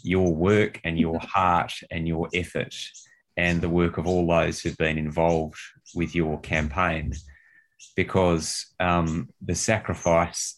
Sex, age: male, 30-49